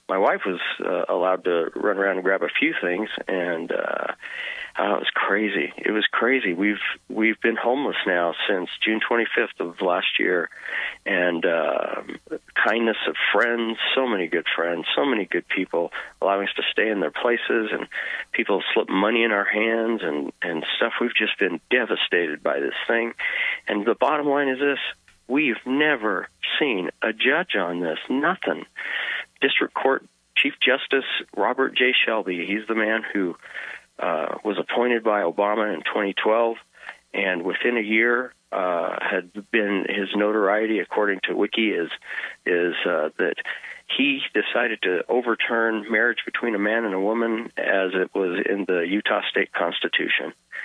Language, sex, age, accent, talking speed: English, male, 40-59, American, 160 wpm